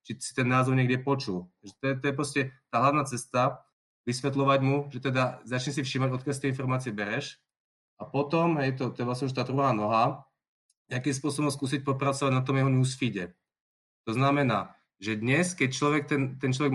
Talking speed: 200 wpm